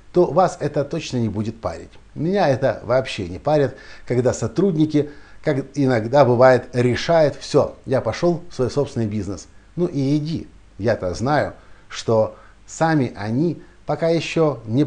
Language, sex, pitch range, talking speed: Russian, male, 105-145 Hz, 145 wpm